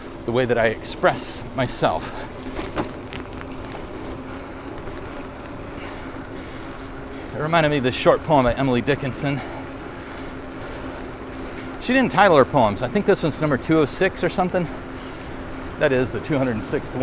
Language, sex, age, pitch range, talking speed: English, male, 40-59, 110-145 Hz, 115 wpm